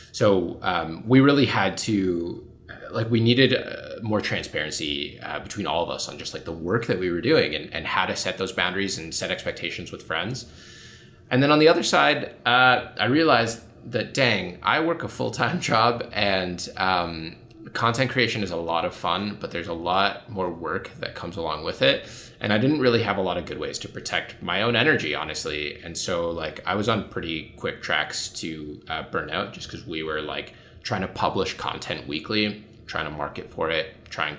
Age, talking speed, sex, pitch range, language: 20-39, 210 wpm, male, 80-115 Hz, English